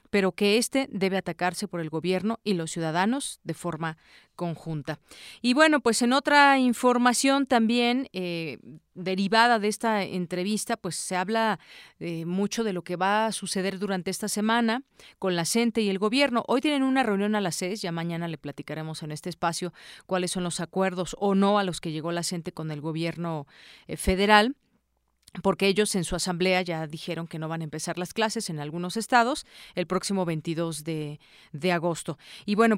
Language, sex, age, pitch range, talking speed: Spanish, female, 40-59, 170-215 Hz, 185 wpm